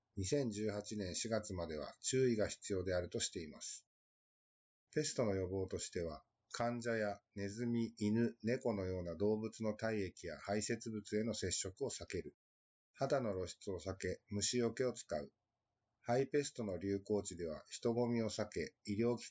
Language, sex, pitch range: Japanese, male, 95-120 Hz